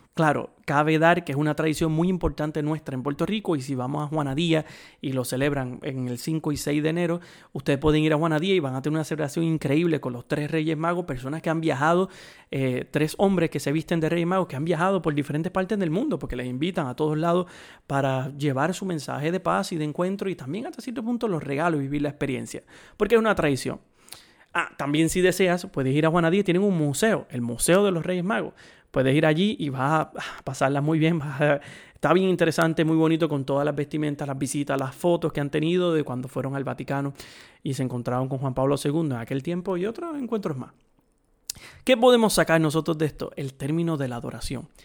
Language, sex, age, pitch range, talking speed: Spanish, male, 30-49, 140-175 Hz, 225 wpm